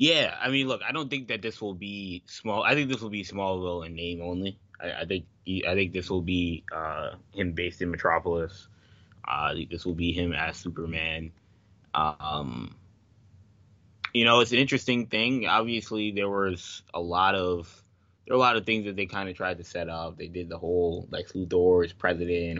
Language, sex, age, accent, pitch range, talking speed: English, male, 20-39, American, 90-110 Hz, 210 wpm